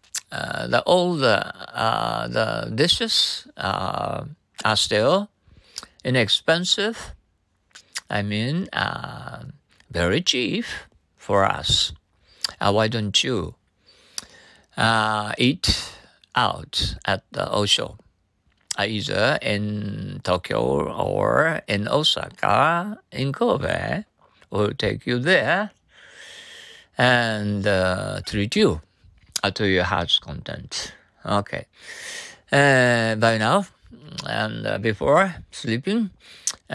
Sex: male